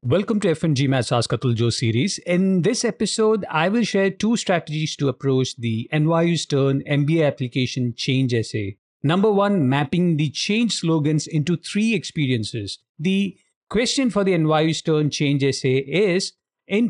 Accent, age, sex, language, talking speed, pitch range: Indian, 50-69, male, English, 140 wpm, 125-175 Hz